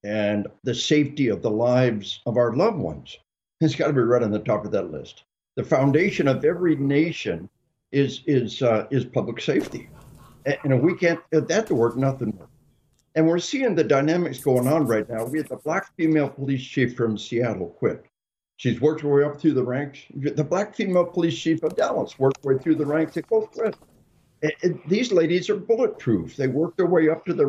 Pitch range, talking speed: 130-175 Hz, 210 wpm